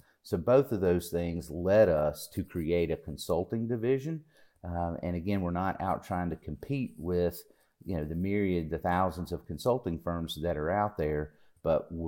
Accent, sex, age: American, male, 40-59